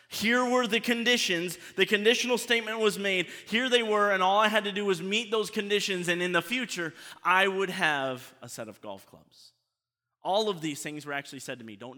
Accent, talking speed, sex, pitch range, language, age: American, 220 wpm, male, 170-220 Hz, English, 30-49